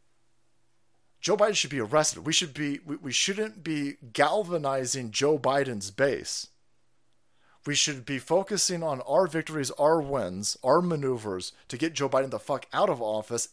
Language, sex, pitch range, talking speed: English, male, 125-175 Hz, 160 wpm